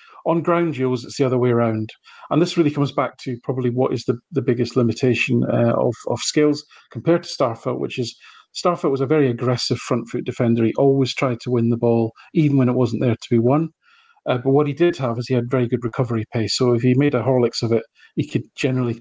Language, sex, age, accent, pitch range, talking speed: English, male, 40-59, British, 120-145 Hz, 245 wpm